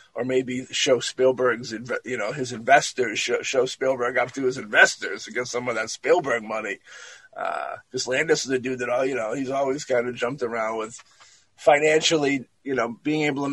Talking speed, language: 200 wpm, English